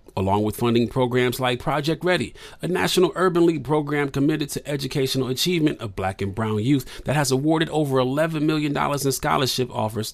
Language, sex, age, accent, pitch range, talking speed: English, male, 40-59, American, 115-165 Hz, 180 wpm